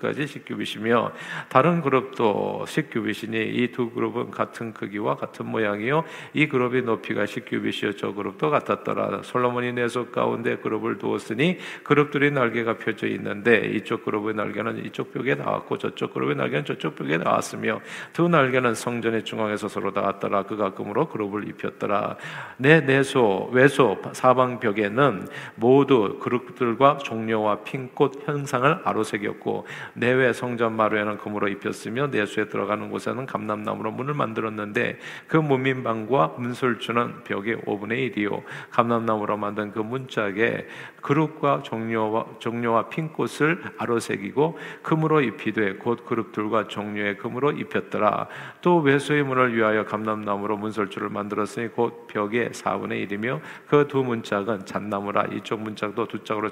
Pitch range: 105-130 Hz